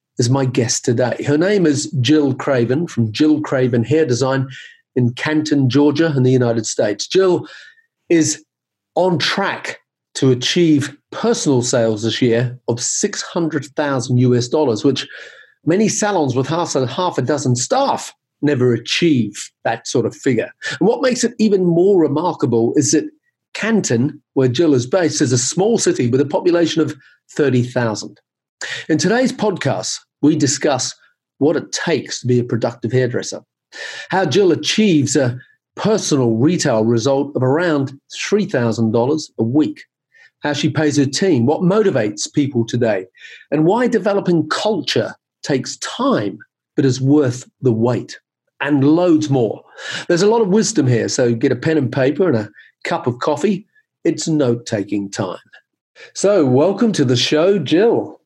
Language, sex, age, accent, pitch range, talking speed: English, male, 40-59, British, 125-175 Hz, 155 wpm